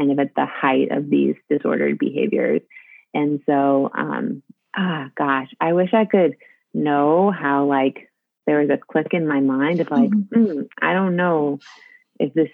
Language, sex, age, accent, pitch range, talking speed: English, female, 30-49, American, 140-185 Hz, 170 wpm